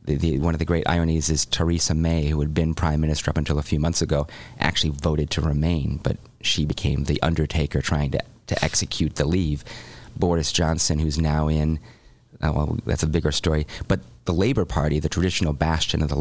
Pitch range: 75-95 Hz